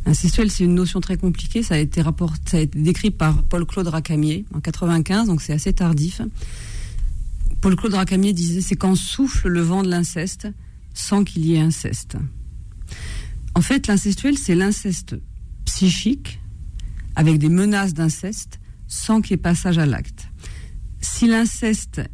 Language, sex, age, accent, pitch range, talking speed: French, female, 40-59, French, 155-200 Hz, 160 wpm